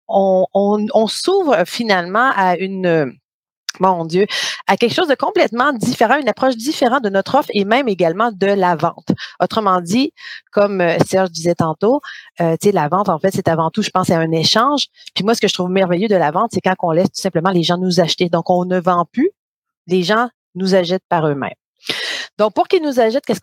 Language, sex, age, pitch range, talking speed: French, female, 30-49, 180-230 Hz, 220 wpm